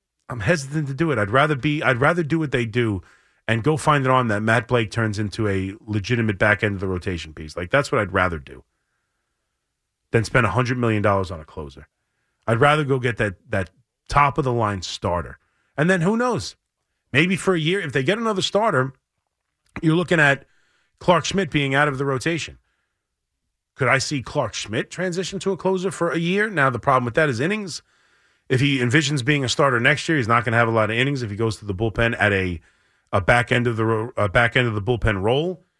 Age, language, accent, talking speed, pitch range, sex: 30-49, English, American, 230 wpm, 105-145 Hz, male